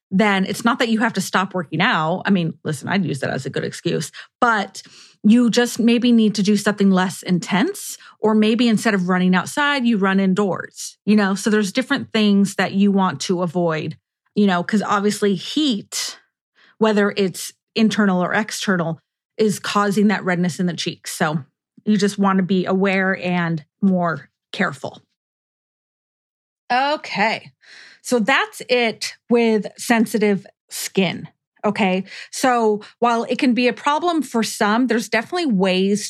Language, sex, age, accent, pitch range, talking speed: English, female, 30-49, American, 190-230 Hz, 160 wpm